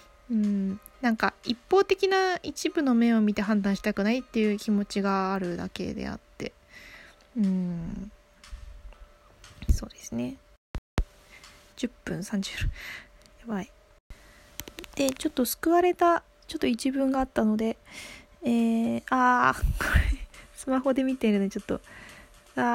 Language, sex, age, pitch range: Japanese, female, 20-39, 205-265 Hz